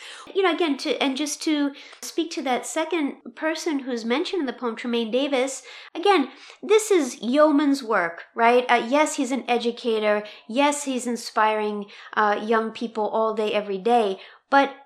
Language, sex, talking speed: English, female, 165 wpm